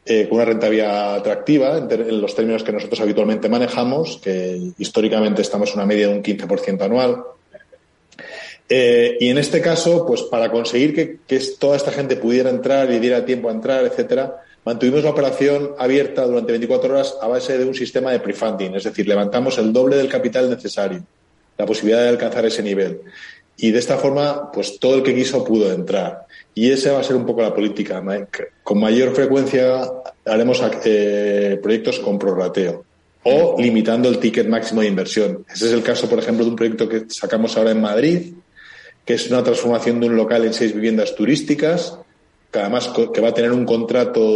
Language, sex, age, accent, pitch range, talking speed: Spanish, male, 30-49, Spanish, 110-135 Hz, 185 wpm